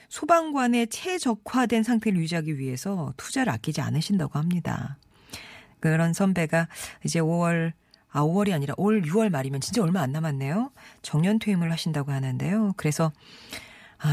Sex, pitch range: female, 150-215 Hz